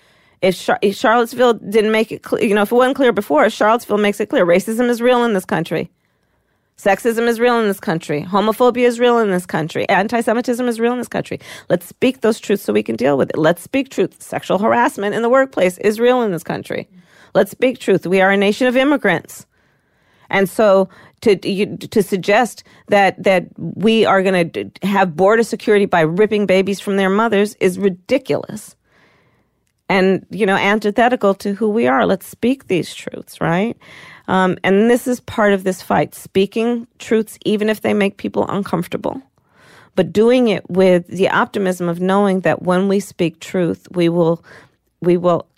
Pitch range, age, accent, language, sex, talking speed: 180-225 Hz, 40-59, American, English, female, 185 wpm